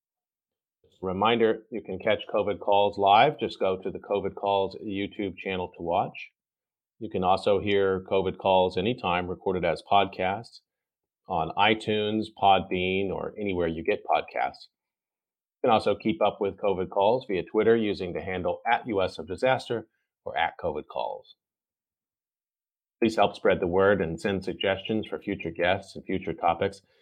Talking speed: 155 wpm